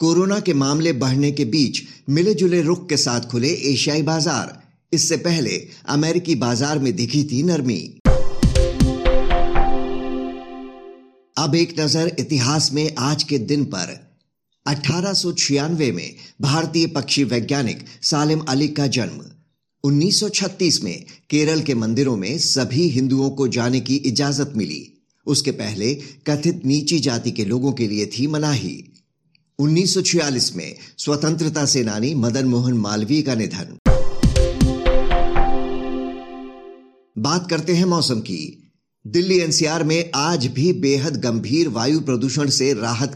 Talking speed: 125 wpm